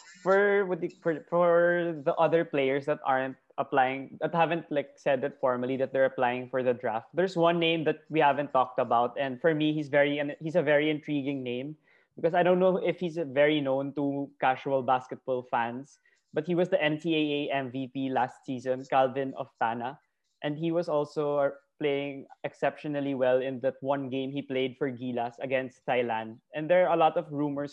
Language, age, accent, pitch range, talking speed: Filipino, 20-39, native, 130-155 Hz, 190 wpm